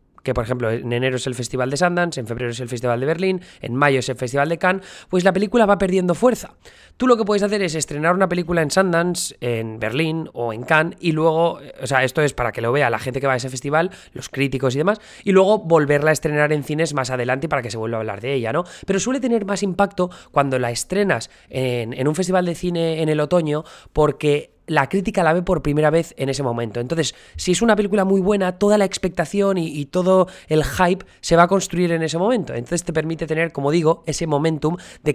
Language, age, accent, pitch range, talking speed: Spanish, 20-39, Spanish, 130-185 Hz, 245 wpm